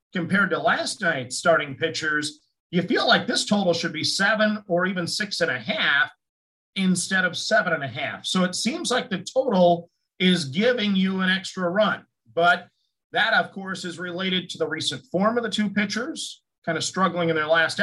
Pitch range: 165-205 Hz